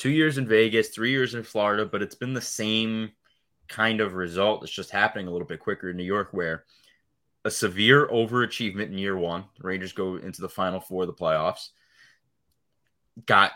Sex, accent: male, American